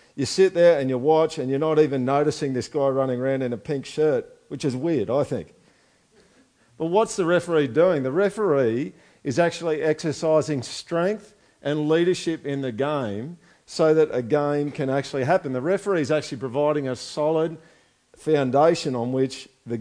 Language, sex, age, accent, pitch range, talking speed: English, male, 50-69, Australian, 135-165 Hz, 175 wpm